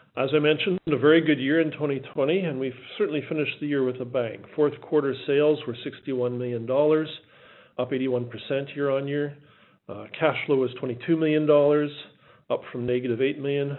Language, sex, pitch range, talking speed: English, male, 120-150 Hz, 160 wpm